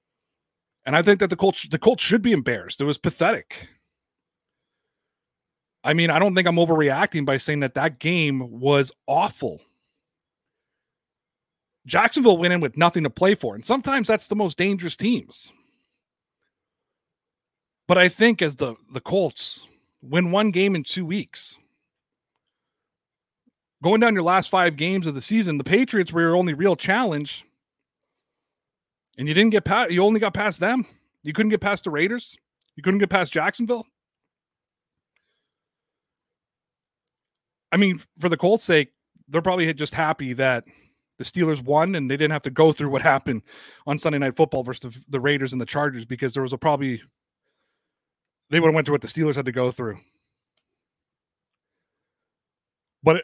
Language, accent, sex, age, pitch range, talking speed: English, American, male, 30-49, 140-195 Hz, 160 wpm